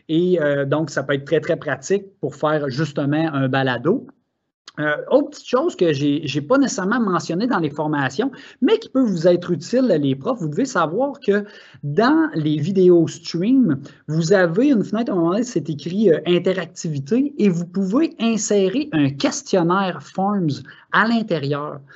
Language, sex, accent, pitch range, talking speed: French, male, Canadian, 145-195 Hz, 165 wpm